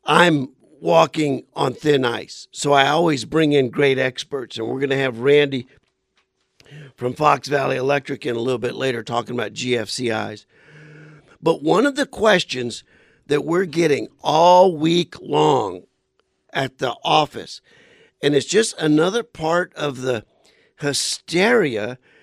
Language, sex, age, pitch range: English, male, 50-69, 125-160 Hz